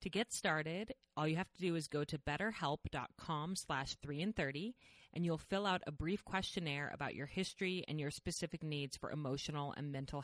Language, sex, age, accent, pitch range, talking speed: English, female, 30-49, American, 145-190 Hz, 195 wpm